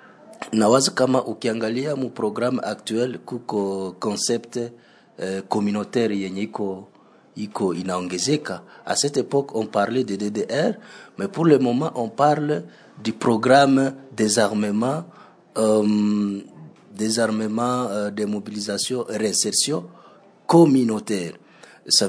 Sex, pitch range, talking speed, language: male, 105-135 Hz, 100 wpm, French